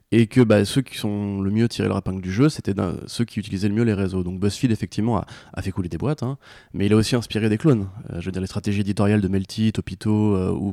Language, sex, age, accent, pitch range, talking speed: French, male, 20-39, French, 95-115 Hz, 285 wpm